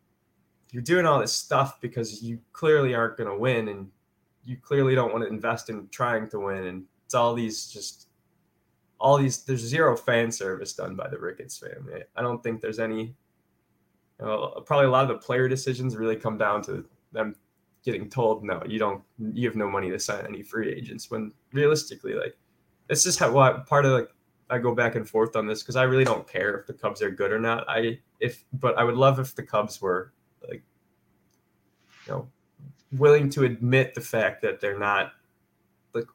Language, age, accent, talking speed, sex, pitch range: English, 10-29, American, 205 wpm, male, 110-130 Hz